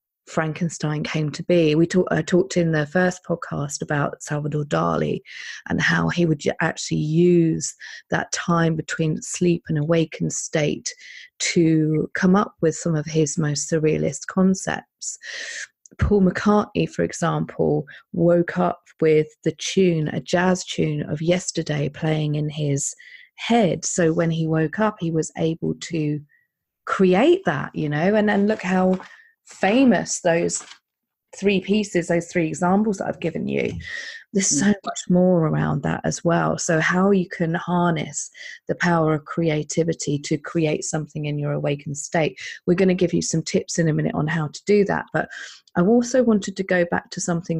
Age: 30-49